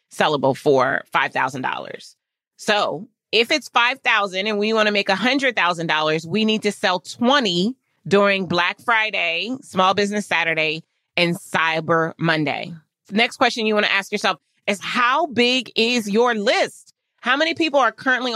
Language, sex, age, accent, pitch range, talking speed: English, female, 30-49, American, 185-240 Hz, 145 wpm